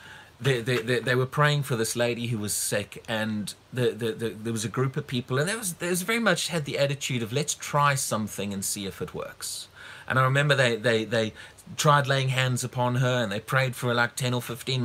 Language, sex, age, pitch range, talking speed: English, male, 30-49, 125-155 Hz, 245 wpm